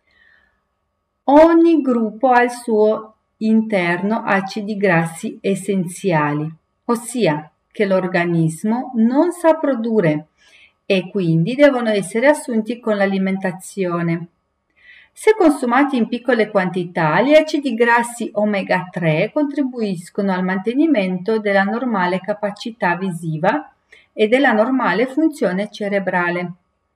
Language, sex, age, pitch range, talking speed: Italian, female, 40-59, 185-250 Hz, 100 wpm